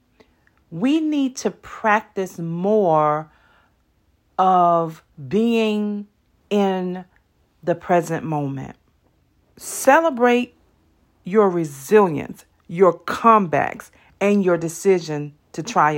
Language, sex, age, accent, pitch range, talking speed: English, female, 40-59, American, 130-210 Hz, 80 wpm